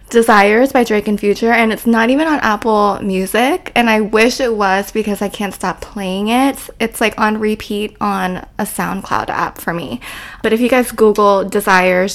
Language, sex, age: English, female, 20-39